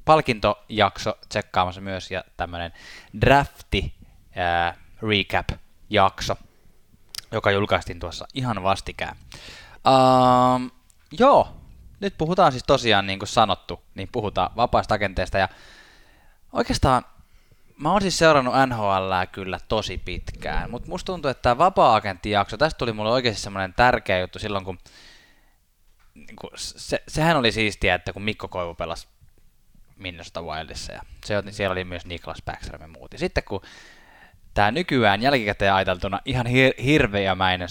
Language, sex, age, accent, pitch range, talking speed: Finnish, male, 20-39, native, 95-125 Hz, 130 wpm